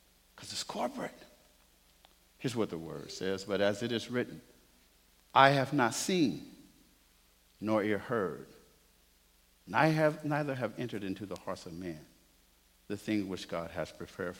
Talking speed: 140 wpm